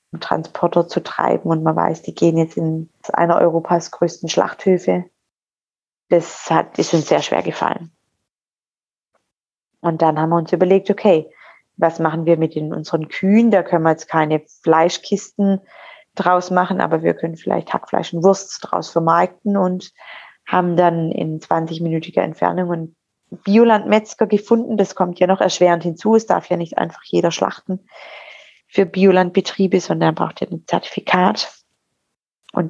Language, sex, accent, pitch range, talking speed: German, female, German, 165-195 Hz, 150 wpm